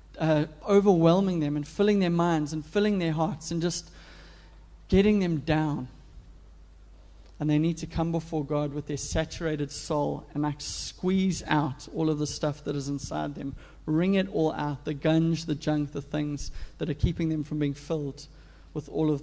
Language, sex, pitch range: English, male, 145-175 Hz